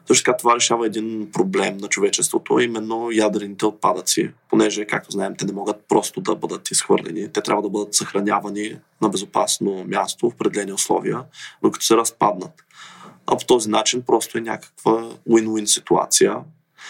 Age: 20-39